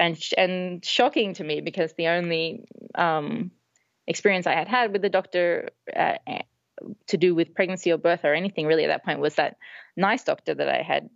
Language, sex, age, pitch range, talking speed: English, female, 20-39, 160-185 Hz, 195 wpm